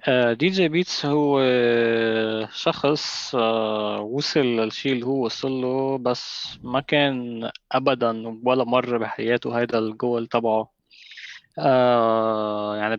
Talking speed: 105 wpm